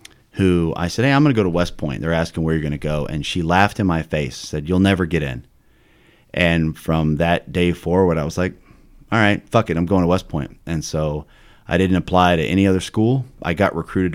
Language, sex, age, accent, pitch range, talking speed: English, male, 30-49, American, 80-95 Hz, 245 wpm